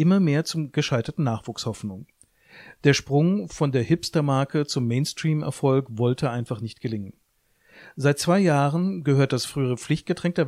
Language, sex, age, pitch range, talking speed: German, male, 40-59, 125-165 Hz, 135 wpm